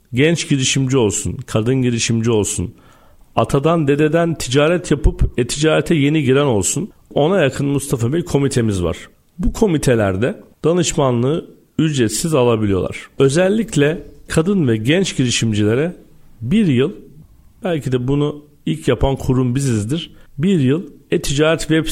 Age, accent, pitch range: 50-69, native, 115-150 Hz